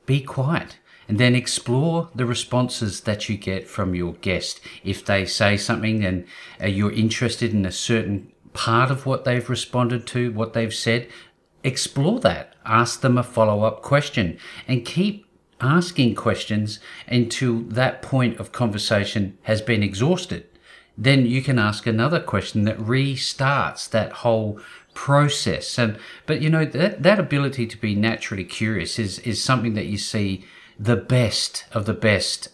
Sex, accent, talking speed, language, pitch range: male, Australian, 155 wpm, English, 100-125 Hz